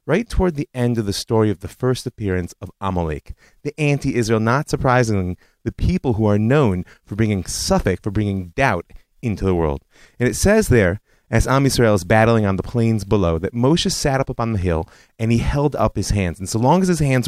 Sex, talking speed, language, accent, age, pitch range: male, 220 wpm, English, American, 30-49, 95-140 Hz